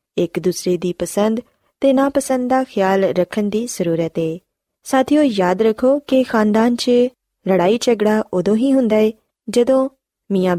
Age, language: 20-39, Punjabi